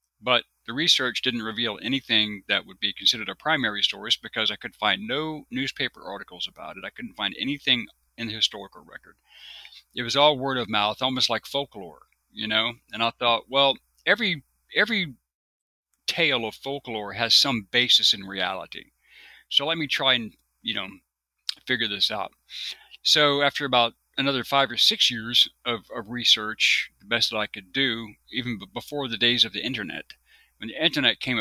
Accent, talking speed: American, 180 wpm